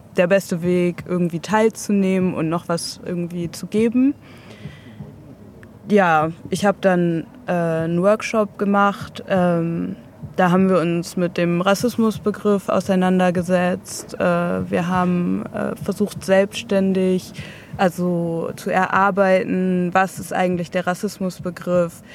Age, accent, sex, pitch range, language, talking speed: 20-39, German, female, 175-200 Hz, German, 110 wpm